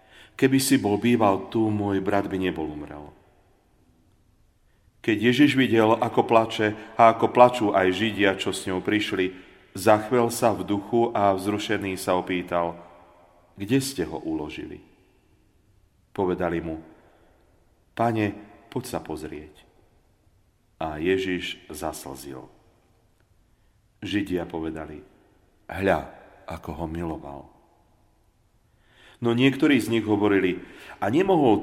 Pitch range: 85-110 Hz